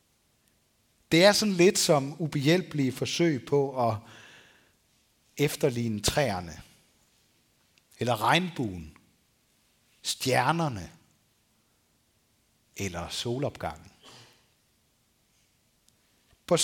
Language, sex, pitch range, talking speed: Danish, male, 115-150 Hz, 60 wpm